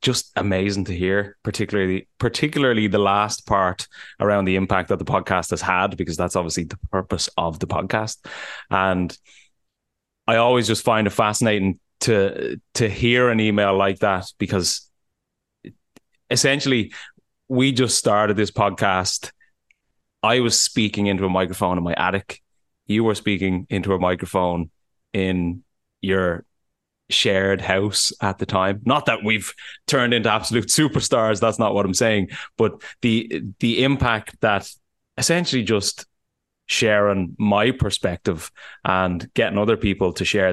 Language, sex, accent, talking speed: English, male, Irish, 140 wpm